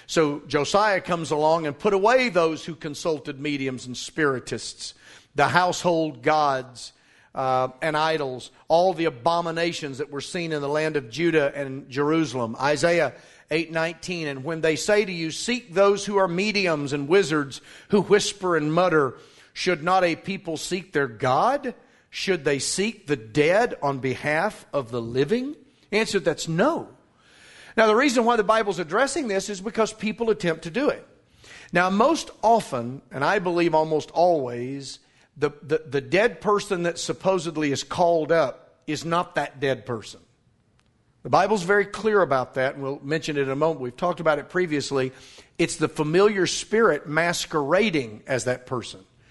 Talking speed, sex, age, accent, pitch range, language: 165 wpm, male, 40-59, American, 140-195 Hz, English